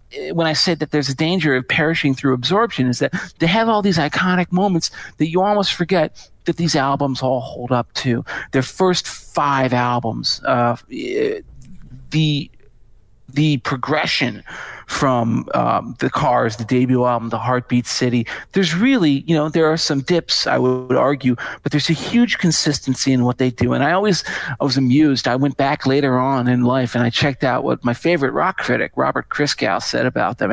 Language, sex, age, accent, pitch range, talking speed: English, male, 40-59, American, 125-150 Hz, 185 wpm